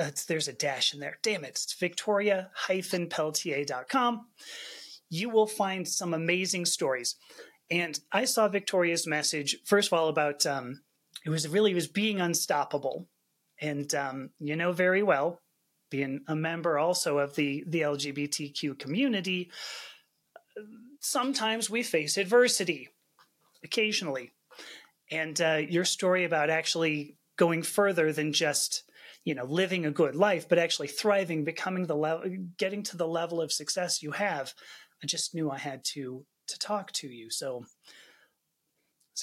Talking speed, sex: 145 wpm, male